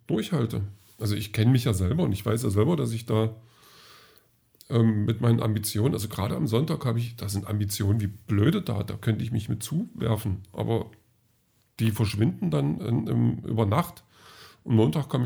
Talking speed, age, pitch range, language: 190 wpm, 40-59, 105-120 Hz, German